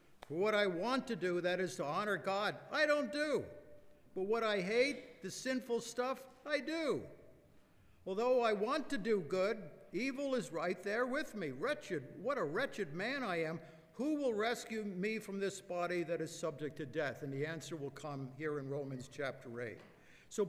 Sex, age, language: male, 60-79, English